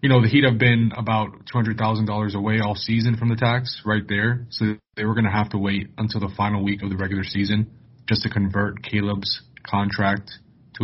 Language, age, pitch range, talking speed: English, 20-39, 100-120 Hz, 210 wpm